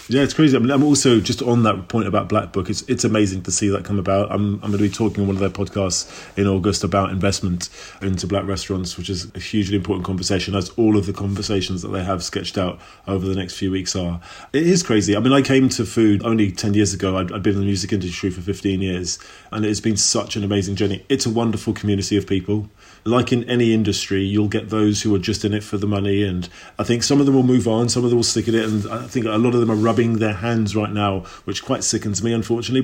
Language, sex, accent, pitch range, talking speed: English, male, British, 100-120 Hz, 270 wpm